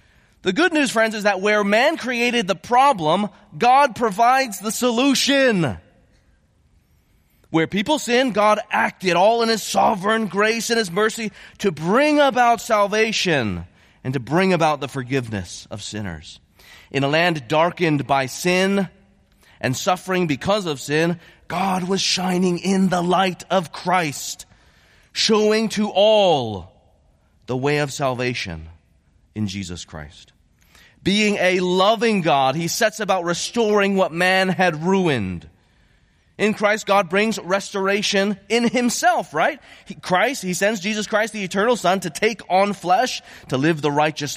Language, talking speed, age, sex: English, 140 wpm, 30-49, male